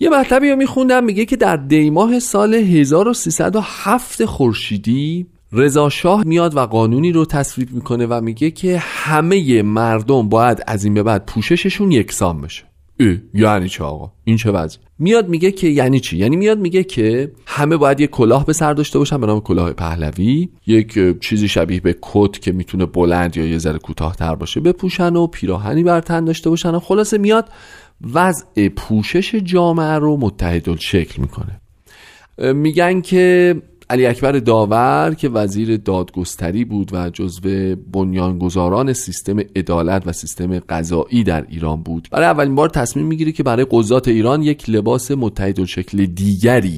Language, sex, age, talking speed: Persian, male, 30-49, 160 wpm